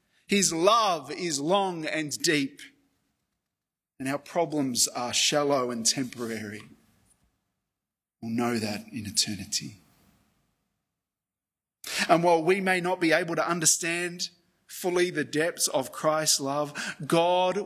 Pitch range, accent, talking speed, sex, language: 150-195 Hz, Australian, 115 wpm, male, English